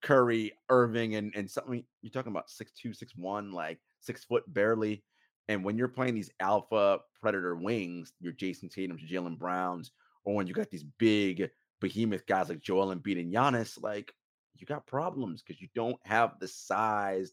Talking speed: 180 wpm